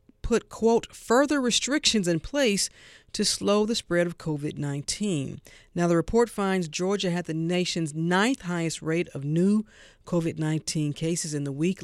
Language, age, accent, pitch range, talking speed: English, 50-69, American, 155-200 Hz, 150 wpm